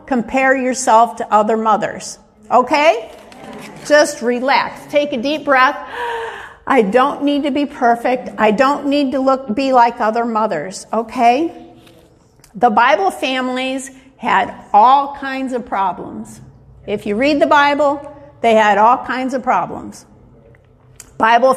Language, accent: English, American